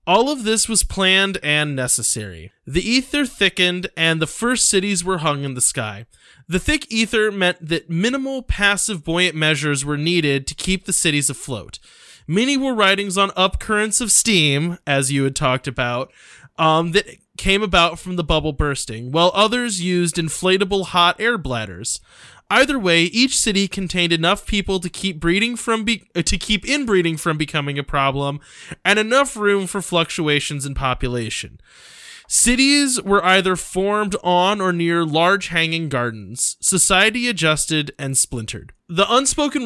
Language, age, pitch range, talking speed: English, 20-39, 145-200 Hz, 160 wpm